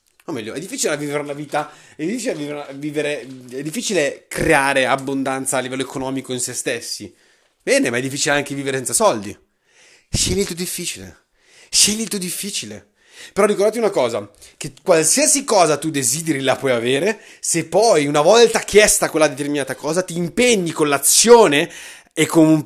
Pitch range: 135-200 Hz